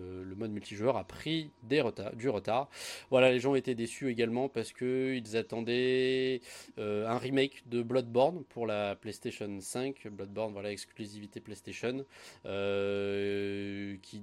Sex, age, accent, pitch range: male, 20-39, French, 105-130 Hz